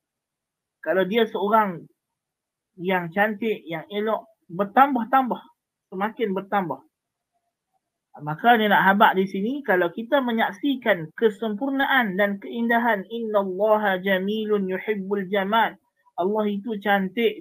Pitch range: 200-250 Hz